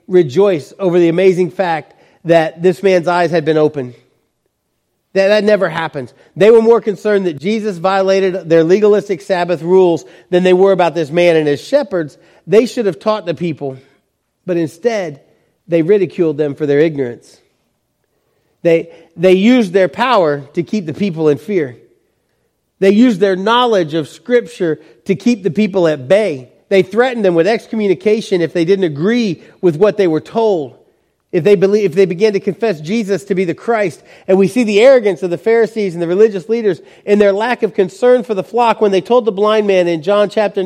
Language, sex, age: English, male, 40-59